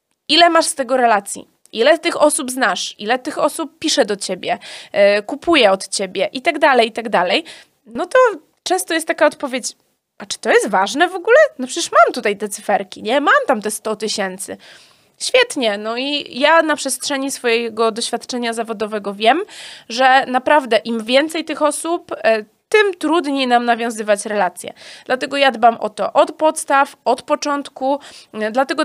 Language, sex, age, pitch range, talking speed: Polish, female, 20-39, 235-305 Hz, 165 wpm